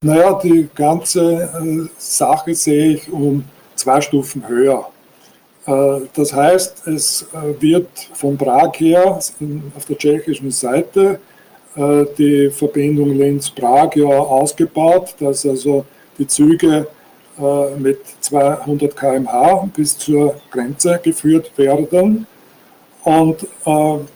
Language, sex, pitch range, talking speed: German, male, 145-165 Hz, 115 wpm